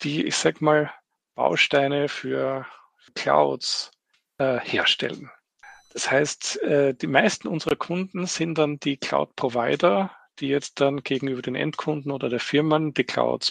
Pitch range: 130-165 Hz